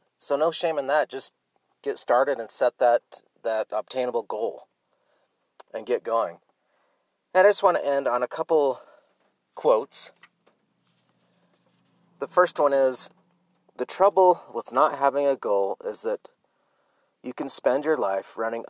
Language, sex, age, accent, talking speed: English, male, 30-49, American, 150 wpm